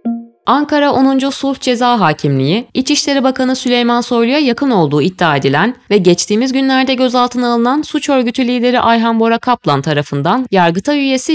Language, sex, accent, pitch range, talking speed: Turkish, female, native, 170-255 Hz, 145 wpm